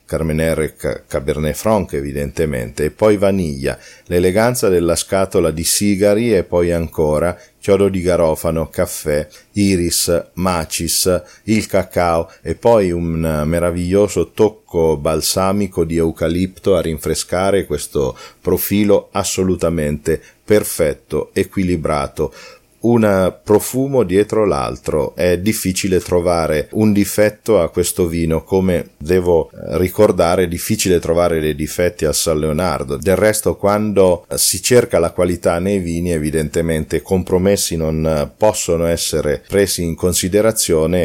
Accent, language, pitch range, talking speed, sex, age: native, Italian, 80-100 Hz, 115 wpm, male, 40-59